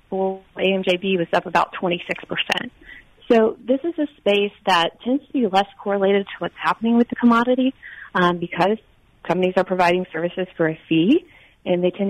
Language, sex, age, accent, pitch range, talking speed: English, female, 30-49, American, 175-225 Hz, 175 wpm